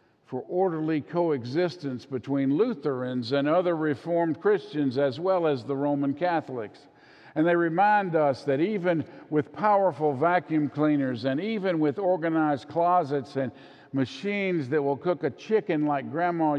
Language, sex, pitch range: English, male, 130-165 Hz